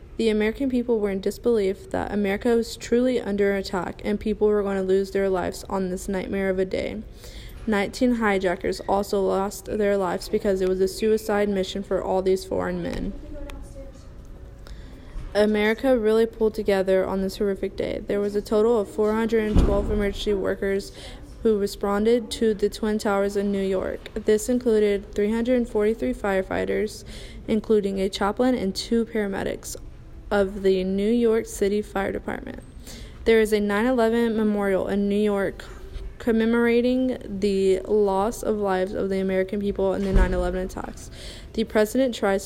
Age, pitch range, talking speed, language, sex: 10-29, 195-220 Hz, 155 wpm, English, female